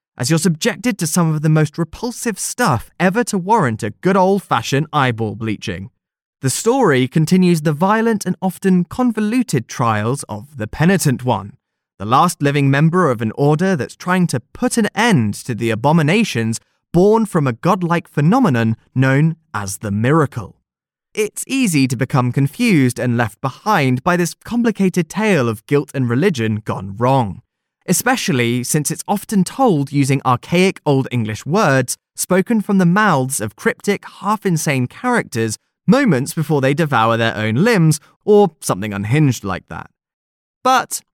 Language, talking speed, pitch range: English, 155 wpm, 125-190 Hz